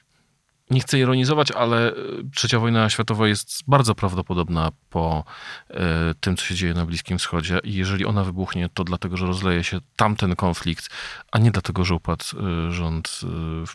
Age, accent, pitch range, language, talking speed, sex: 40-59, native, 95-115 Hz, Polish, 155 wpm, male